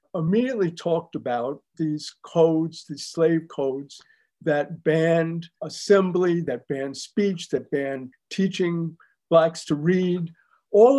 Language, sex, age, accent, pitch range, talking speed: English, male, 50-69, American, 155-195 Hz, 115 wpm